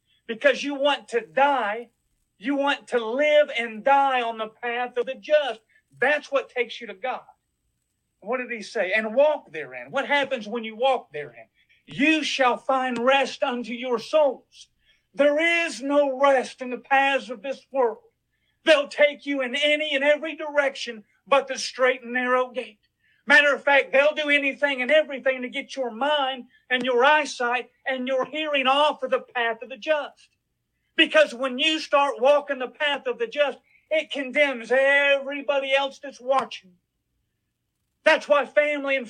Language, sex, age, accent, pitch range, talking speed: English, male, 50-69, American, 250-290 Hz, 170 wpm